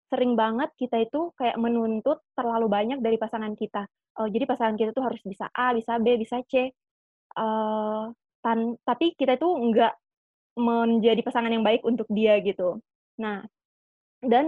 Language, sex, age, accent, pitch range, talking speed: Indonesian, female, 20-39, native, 225-250 Hz, 160 wpm